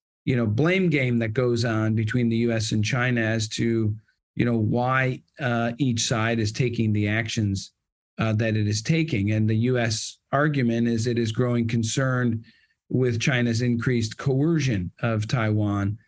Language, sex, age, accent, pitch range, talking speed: English, male, 40-59, American, 115-135 Hz, 165 wpm